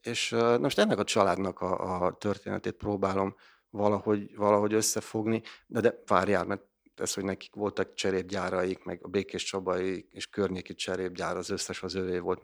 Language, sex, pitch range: Hungarian, male, 95-115 Hz